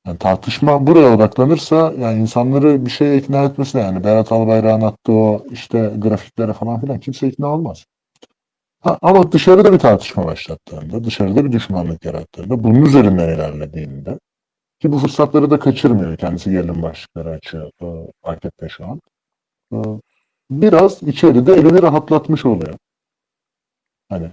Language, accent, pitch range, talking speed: Turkish, native, 95-140 Hz, 135 wpm